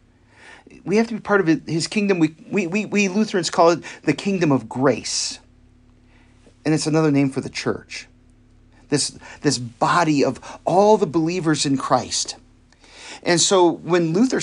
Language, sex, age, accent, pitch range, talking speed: English, male, 40-59, American, 125-190 Hz, 160 wpm